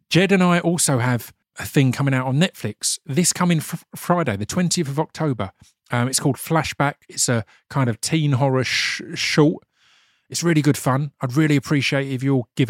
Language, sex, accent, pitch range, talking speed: English, male, British, 120-155 Hz, 185 wpm